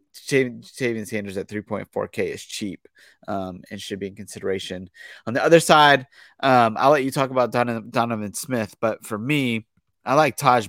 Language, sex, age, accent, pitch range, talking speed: English, male, 30-49, American, 105-130 Hz, 180 wpm